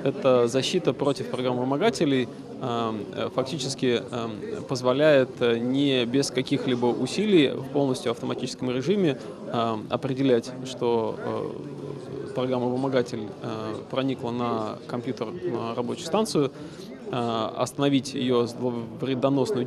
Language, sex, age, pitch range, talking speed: Russian, male, 20-39, 120-140 Hz, 105 wpm